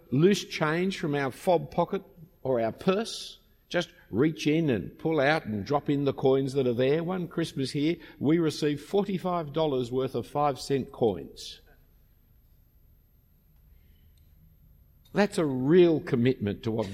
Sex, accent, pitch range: male, Australian, 105-165 Hz